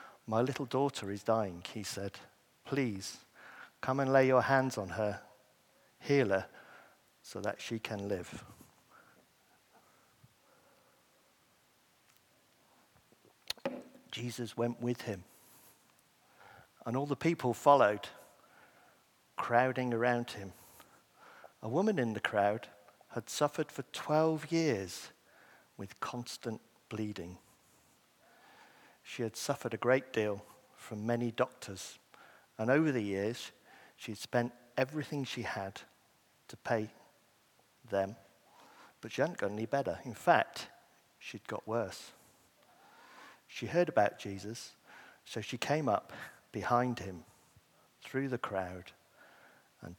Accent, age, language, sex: British, 50-69, English, male